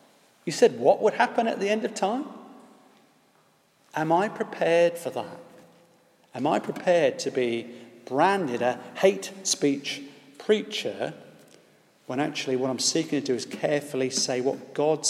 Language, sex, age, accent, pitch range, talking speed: English, male, 40-59, British, 130-170 Hz, 145 wpm